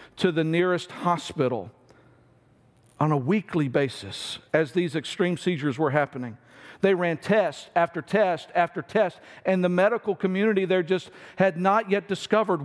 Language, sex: English, male